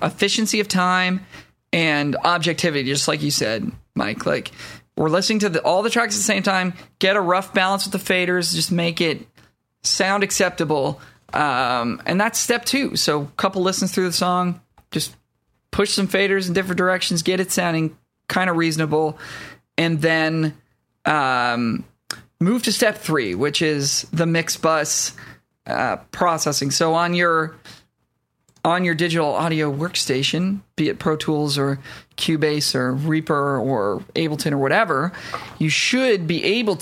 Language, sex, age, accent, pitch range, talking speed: English, male, 20-39, American, 155-195 Hz, 160 wpm